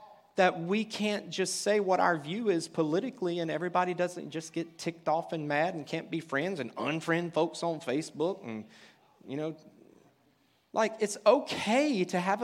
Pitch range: 145-200 Hz